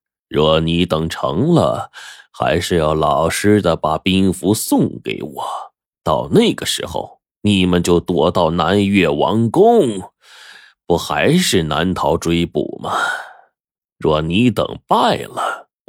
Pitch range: 85-130 Hz